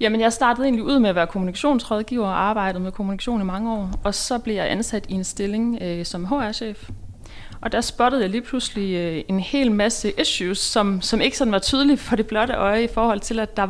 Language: Danish